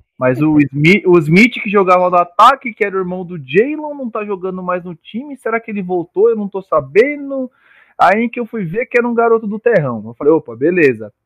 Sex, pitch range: male, 135-185 Hz